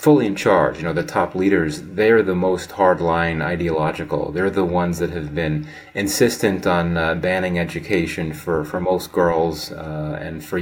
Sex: male